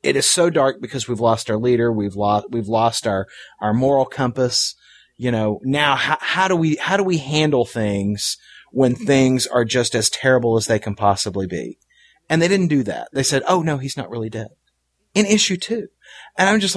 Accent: American